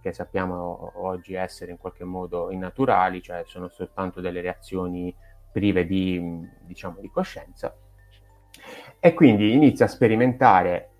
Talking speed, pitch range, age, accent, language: 125 wpm, 90-110 Hz, 30-49, native, Italian